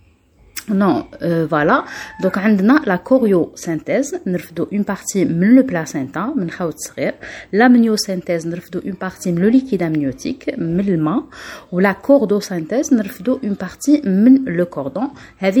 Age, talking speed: 30-49, 125 wpm